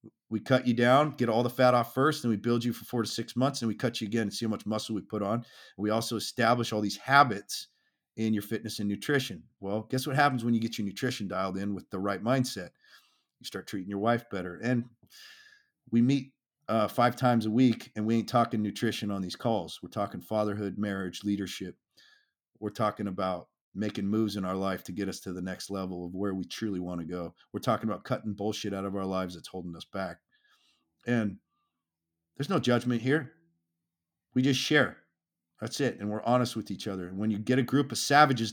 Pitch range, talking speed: 100-125 Hz, 225 wpm